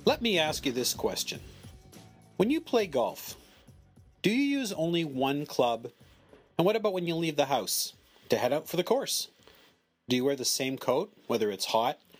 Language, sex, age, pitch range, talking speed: English, male, 40-59, 140-205 Hz, 190 wpm